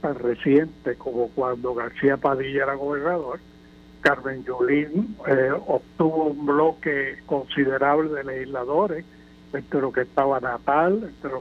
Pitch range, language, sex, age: 130-175 Hz, Spanish, male, 60-79